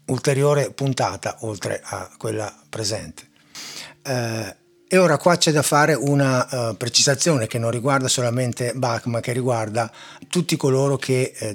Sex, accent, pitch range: male, native, 120-155 Hz